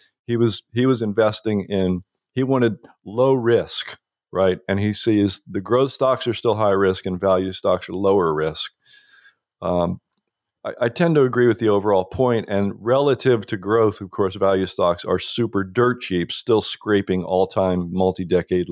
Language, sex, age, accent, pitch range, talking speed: English, male, 40-59, American, 95-130 Hz, 175 wpm